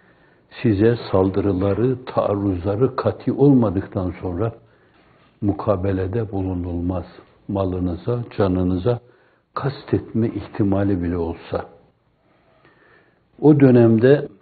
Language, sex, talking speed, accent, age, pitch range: Turkish, male, 70 wpm, native, 60-79, 95-120 Hz